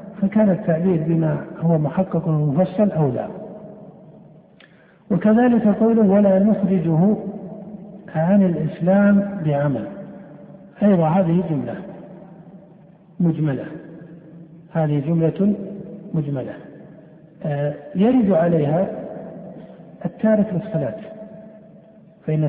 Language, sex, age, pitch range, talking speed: Arabic, male, 60-79, 165-195 Hz, 70 wpm